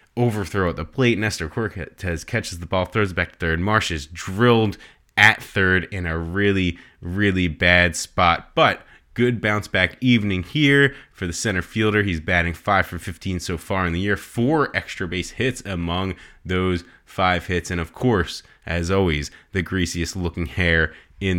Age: 20-39